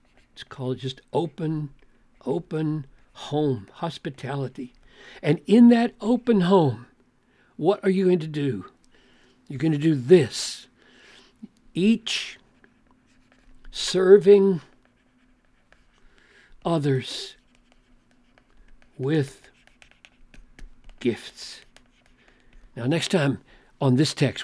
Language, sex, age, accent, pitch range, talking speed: English, male, 60-79, American, 130-175 Hz, 85 wpm